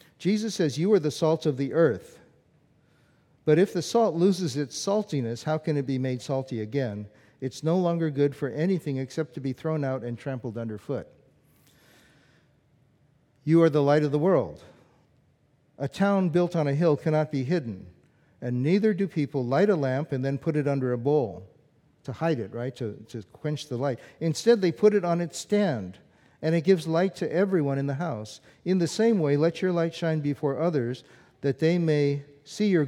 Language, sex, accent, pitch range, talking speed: English, male, American, 125-165 Hz, 195 wpm